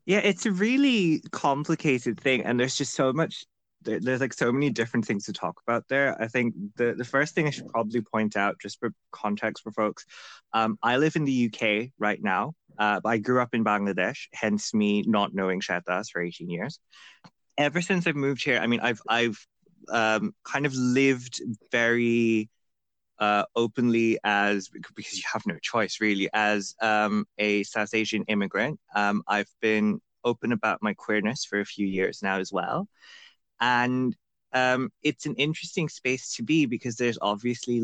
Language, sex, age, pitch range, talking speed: English, male, 20-39, 105-135 Hz, 180 wpm